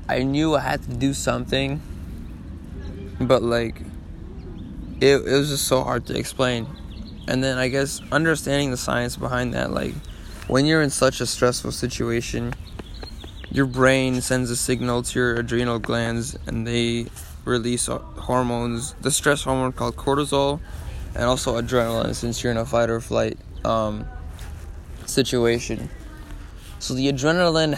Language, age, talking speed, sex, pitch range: English, 20-39, 145 wpm, male, 100-130 Hz